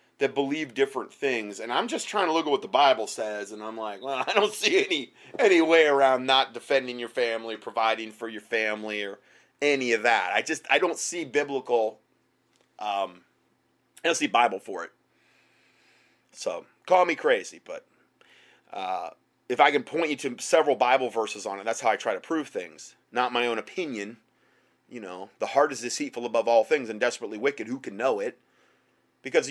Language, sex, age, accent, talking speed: English, male, 30-49, American, 195 wpm